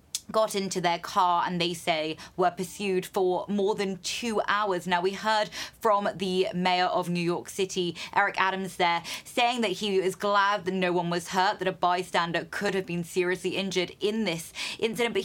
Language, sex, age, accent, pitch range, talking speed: English, female, 20-39, British, 180-210 Hz, 195 wpm